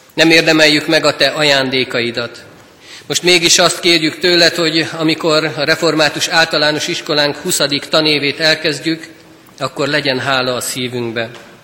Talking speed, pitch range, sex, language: 130 wpm, 145-170 Hz, male, Hungarian